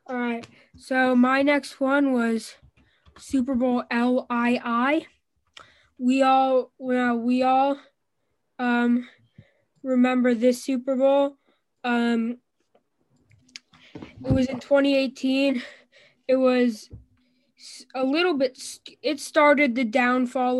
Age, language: 10-29, English